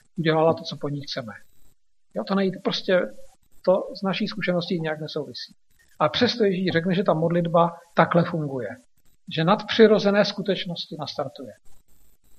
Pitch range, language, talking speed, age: 155-180 Hz, Slovak, 130 wpm, 50-69